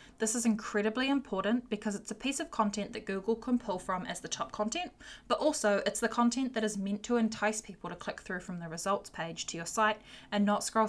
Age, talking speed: 10-29, 235 wpm